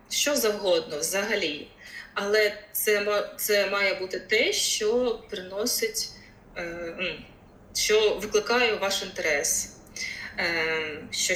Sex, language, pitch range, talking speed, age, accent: female, Ukrainian, 180-255 Hz, 85 wpm, 20-39, native